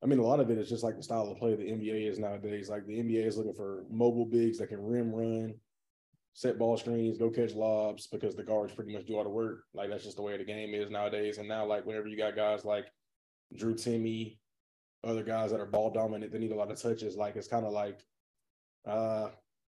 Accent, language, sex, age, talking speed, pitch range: American, English, male, 20-39, 245 wpm, 105-120 Hz